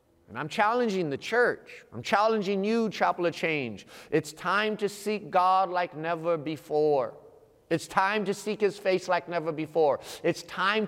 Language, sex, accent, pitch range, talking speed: English, male, American, 140-200 Hz, 165 wpm